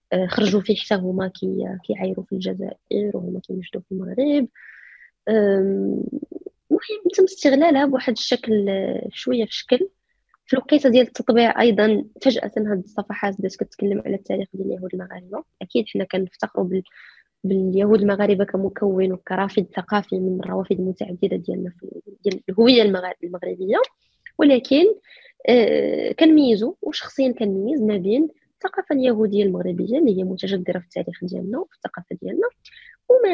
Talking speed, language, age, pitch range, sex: 125 wpm, Arabic, 20-39, 195-275 Hz, female